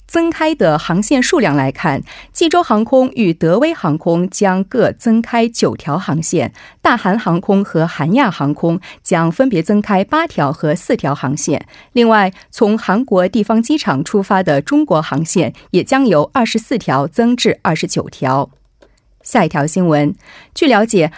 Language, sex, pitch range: Korean, female, 165-250 Hz